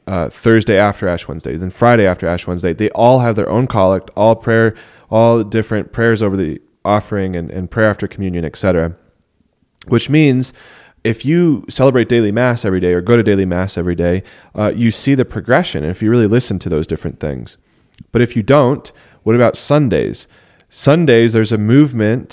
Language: English